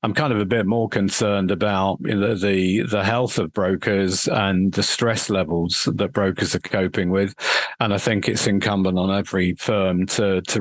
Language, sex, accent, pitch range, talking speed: English, male, British, 100-110 Hz, 180 wpm